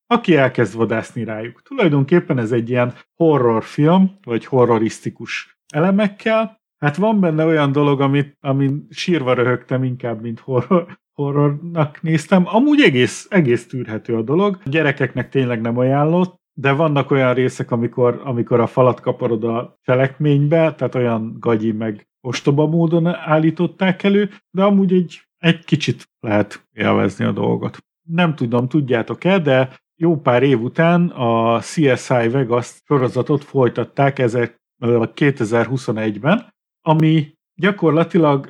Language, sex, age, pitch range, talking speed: Hungarian, male, 50-69, 120-165 Hz, 125 wpm